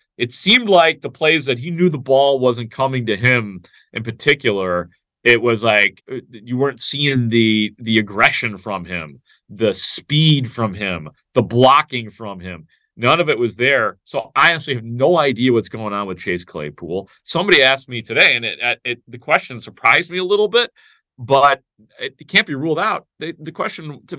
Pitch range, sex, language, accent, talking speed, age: 115-155 Hz, male, English, American, 195 wpm, 40-59